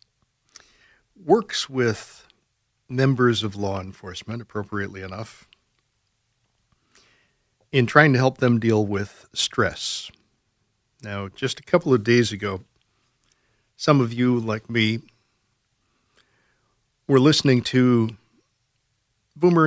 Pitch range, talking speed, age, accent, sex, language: 105-125 Hz, 100 wpm, 60-79, American, male, English